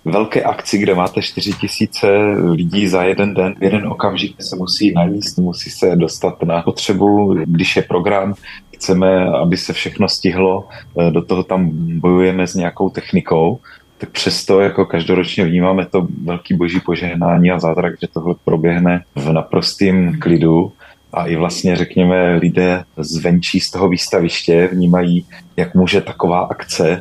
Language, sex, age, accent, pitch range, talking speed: Czech, male, 30-49, native, 85-95 Hz, 145 wpm